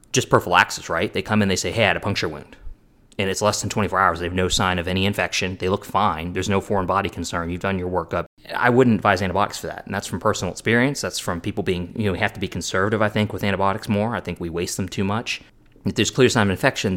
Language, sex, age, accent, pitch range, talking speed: English, male, 20-39, American, 90-105 Hz, 275 wpm